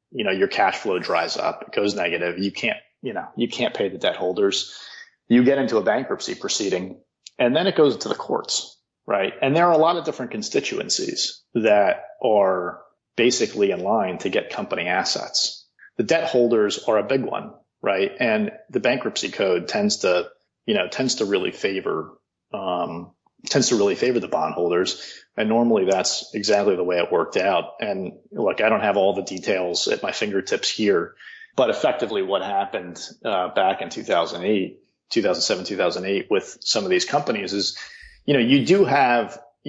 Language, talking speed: English, 180 wpm